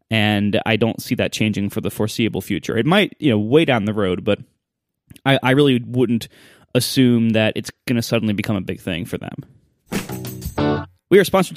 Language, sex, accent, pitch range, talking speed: English, male, American, 115-160 Hz, 195 wpm